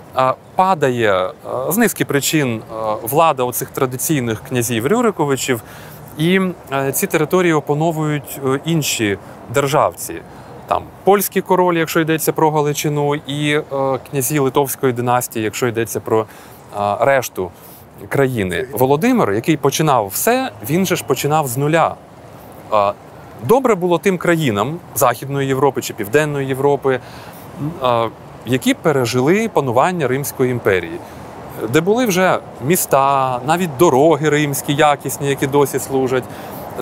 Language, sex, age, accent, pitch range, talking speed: Ukrainian, male, 30-49, native, 125-165 Hz, 110 wpm